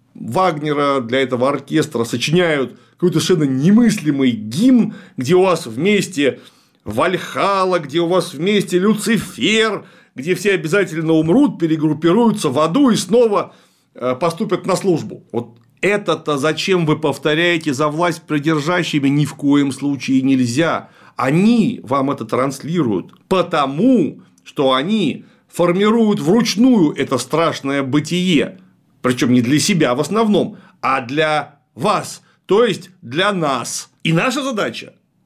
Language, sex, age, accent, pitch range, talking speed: Russian, male, 40-59, native, 145-200 Hz, 120 wpm